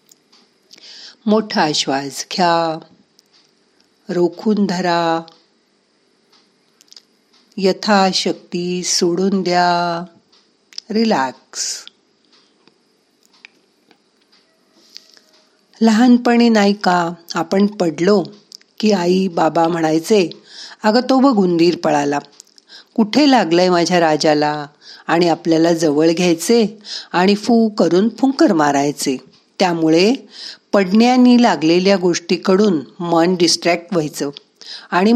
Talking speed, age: 55 wpm, 50-69